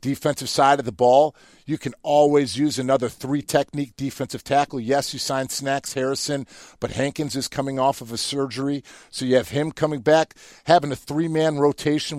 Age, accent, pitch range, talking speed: 50-69, American, 125-145 Hz, 175 wpm